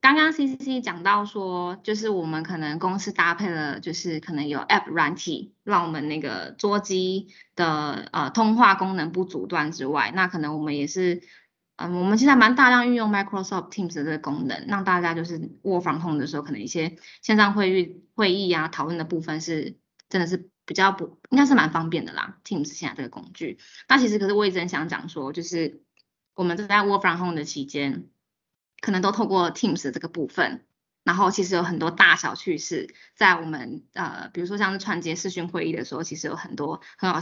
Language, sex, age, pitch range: Chinese, female, 20-39, 165-205 Hz